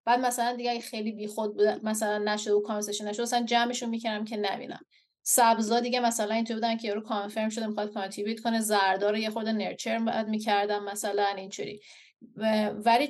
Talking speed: 170 wpm